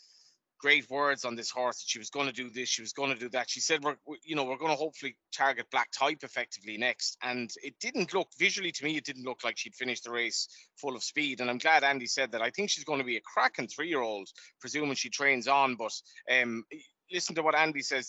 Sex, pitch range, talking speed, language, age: male, 125-145 Hz, 250 wpm, English, 30-49